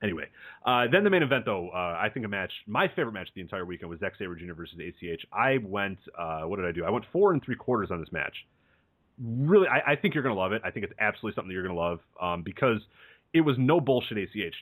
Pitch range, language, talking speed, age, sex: 110-145 Hz, English, 265 wpm, 30-49, male